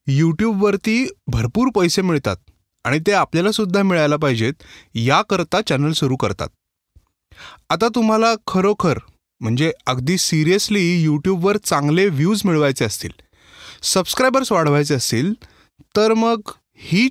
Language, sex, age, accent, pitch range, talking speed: Marathi, male, 30-49, native, 135-200 Hz, 105 wpm